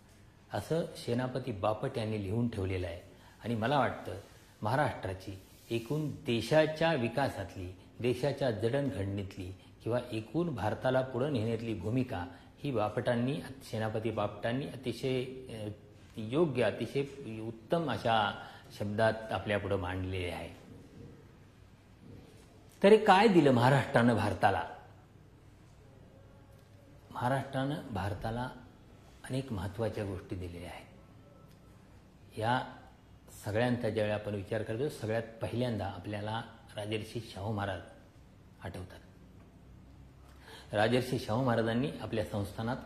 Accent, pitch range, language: native, 100-125 Hz, Marathi